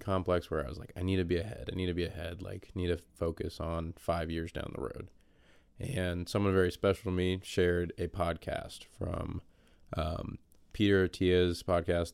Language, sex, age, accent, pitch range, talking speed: English, male, 20-39, American, 85-95 Hz, 195 wpm